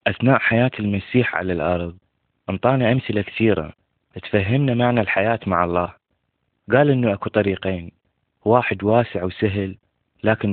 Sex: male